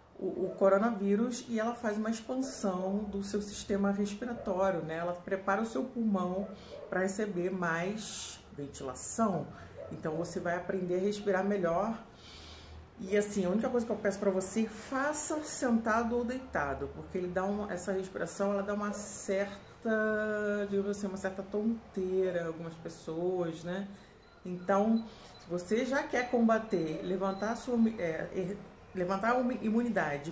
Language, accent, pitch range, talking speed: Portuguese, Brazilian, 180-225 Hz, 150 wpm